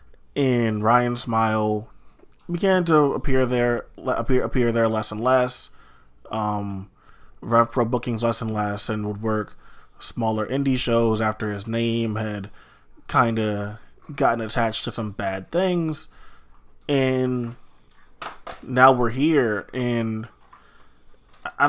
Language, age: English, 20-39